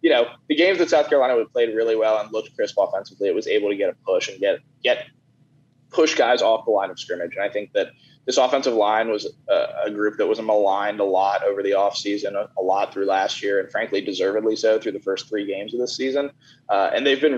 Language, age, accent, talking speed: English, 20-39, American, 250 wpm